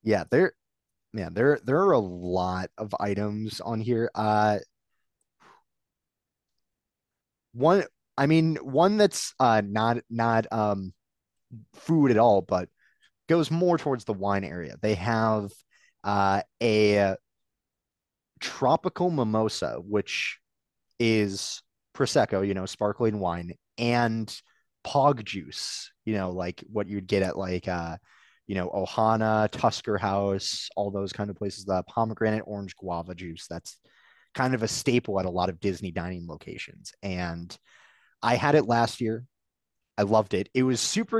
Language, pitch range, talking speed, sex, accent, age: English, 95-120 Hz, 140 wpm, male, American, 30-49